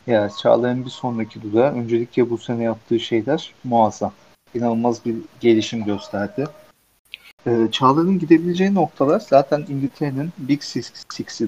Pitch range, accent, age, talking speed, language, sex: 115-145 Hz, native, 50-69, 125 wpm, Turkish, male